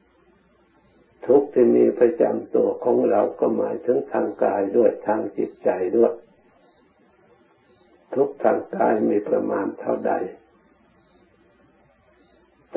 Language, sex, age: Thai, male, 60-79